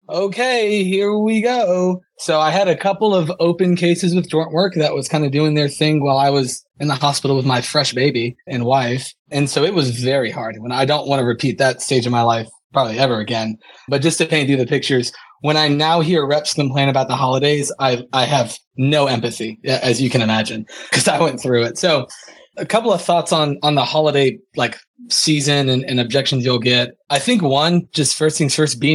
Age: 20-39